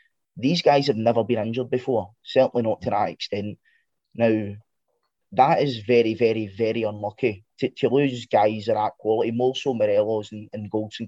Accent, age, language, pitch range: British, 20-39, English, 105-120 Hz